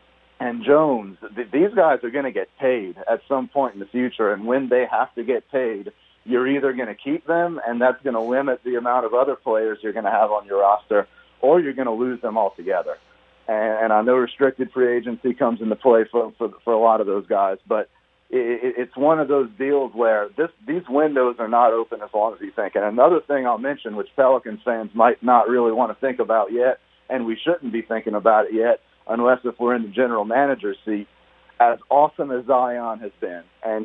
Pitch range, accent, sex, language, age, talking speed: 115-135 Hz, American, male, English, 40-59, 225 wpm